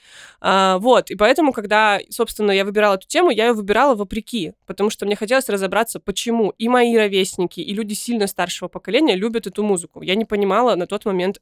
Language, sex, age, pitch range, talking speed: Russian, female, 20-39, 190-230 Hz, 190 wpm